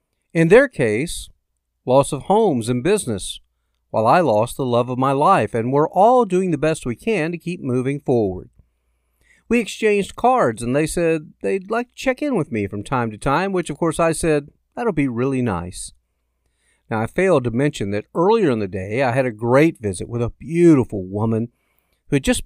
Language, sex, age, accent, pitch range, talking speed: English, male, 50-69, American, 105-170 Hz, 205 wpm